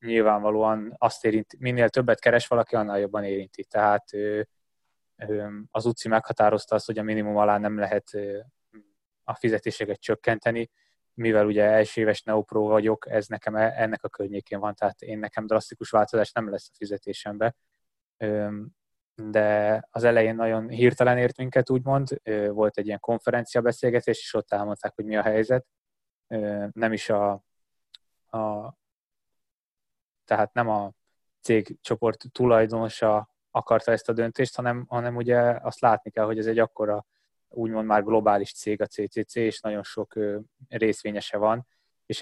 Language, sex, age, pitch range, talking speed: Hungarian, male, 20-39, 105-115 Hz, 140 wpm